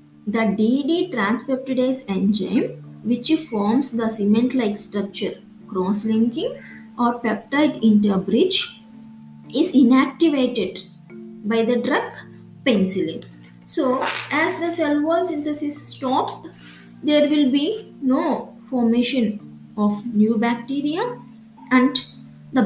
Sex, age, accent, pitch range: female, 20-39, Indian, 205-260 Hz